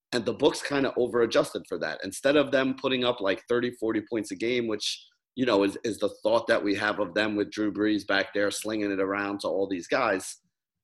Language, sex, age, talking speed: English, male, 30-49, 240 wpm